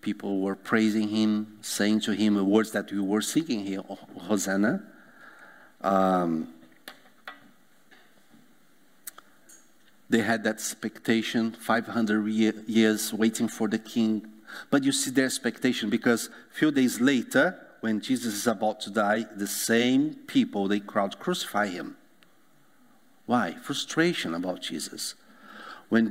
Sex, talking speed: male, 125 wpm